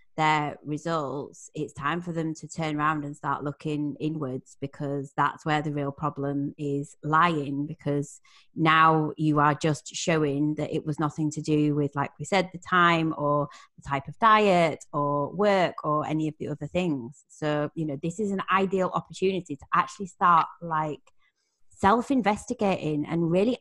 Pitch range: 150-175 Hz